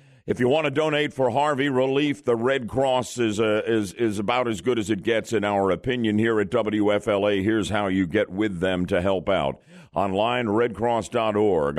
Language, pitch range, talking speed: English, 95-135 Hz, 195 wpm